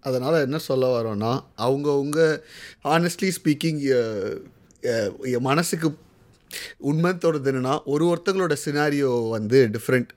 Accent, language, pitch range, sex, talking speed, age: native, Tamil, 120-145 Hz, male, 85 wpm, 30-49